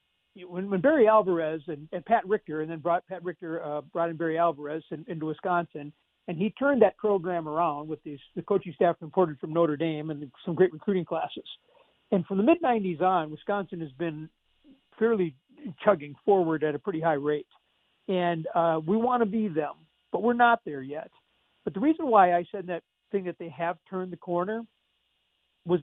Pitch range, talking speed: 165-195 Hz, 195 wpm